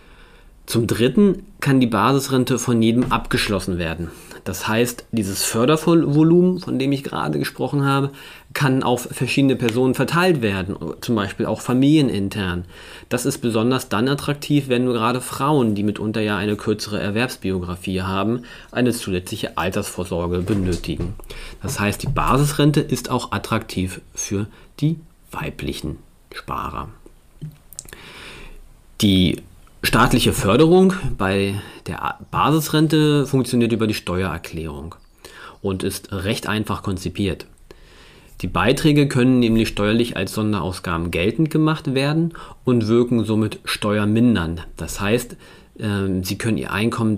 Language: German